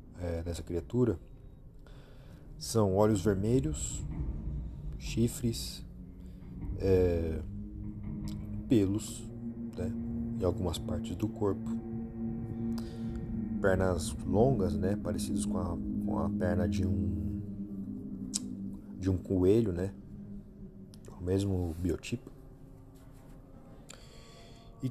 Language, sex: Portuguese, male